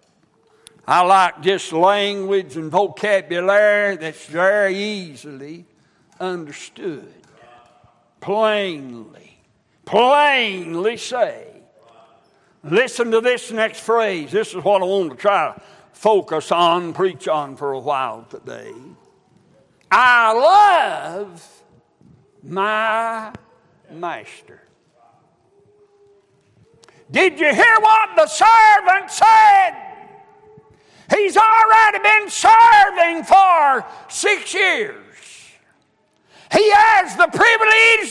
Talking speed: 90 wpm